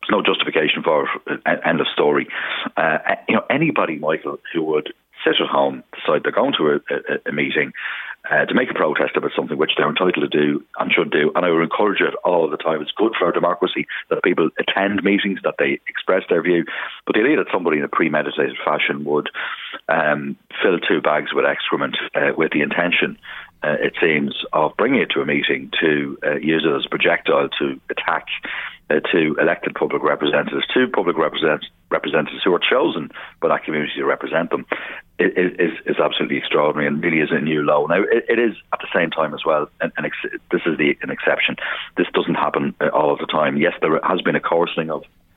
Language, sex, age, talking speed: English, male, 40-59, 210 wpm